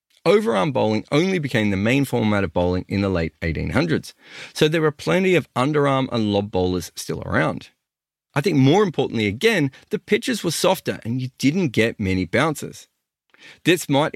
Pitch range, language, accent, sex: 95-150 Hz, English, Australian, male